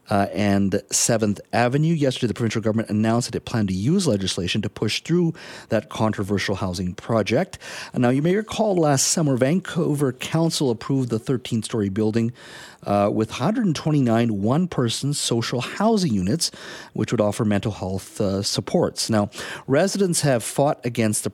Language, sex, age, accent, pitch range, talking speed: English, male, 50-69, American, 105-140 Hz, 150 wpm